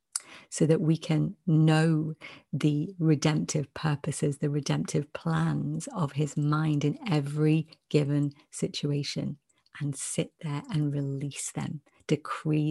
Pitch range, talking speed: 145-165 Hz, 120 wpm